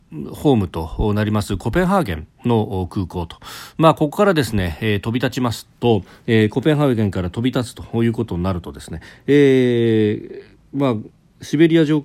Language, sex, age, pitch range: Japanese, male, 40-59, 95-135 Hz